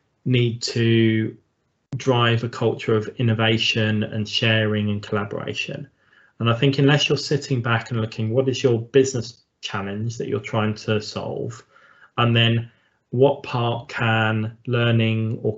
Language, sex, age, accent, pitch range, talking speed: English, male, 20-39, British, 110-125 Hz, 145 wpm